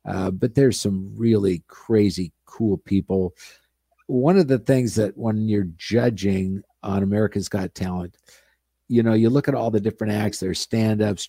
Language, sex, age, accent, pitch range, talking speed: English, male, 50-69, American, 95-115 Hz, 170 wpm